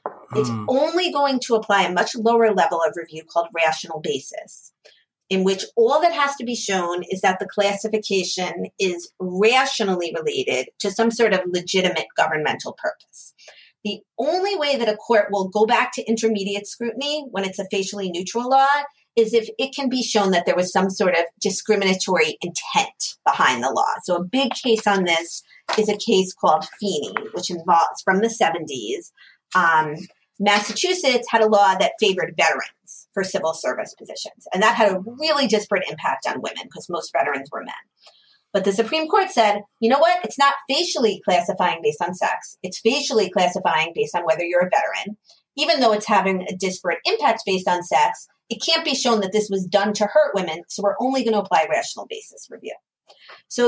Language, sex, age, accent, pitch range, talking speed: English, female, 30-49, American, 190-280 Hz, 185 wpm